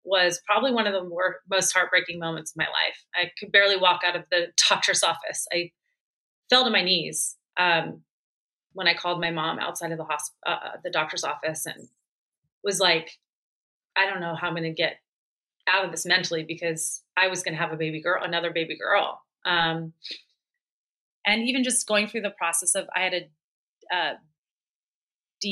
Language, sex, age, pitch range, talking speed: English, female, 30-49, 165-195 Hz, 195 wpm